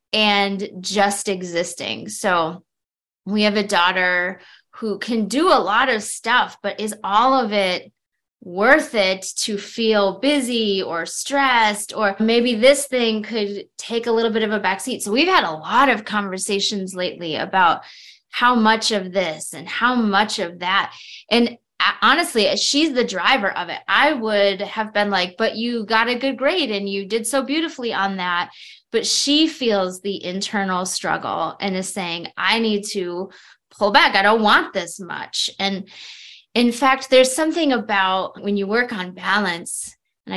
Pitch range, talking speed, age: 195-240 Hz, 170 wpm, 20-39